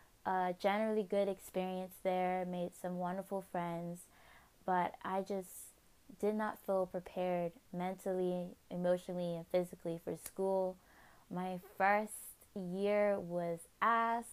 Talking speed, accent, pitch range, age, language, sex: 115 wpm, American, 180-200 Hz, 20-39, English, female